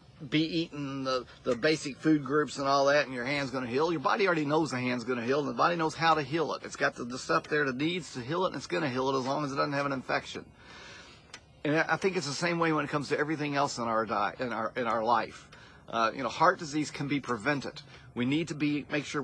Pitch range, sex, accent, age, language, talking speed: 130-160 Hz, male, American, 40-59, English, 295 wpm